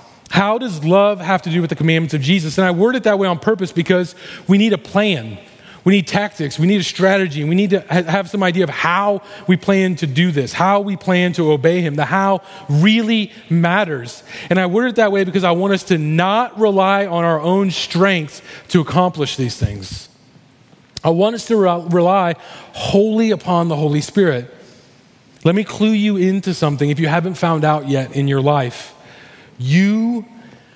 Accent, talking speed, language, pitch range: American, 195 wpm, English, 150-190 Hz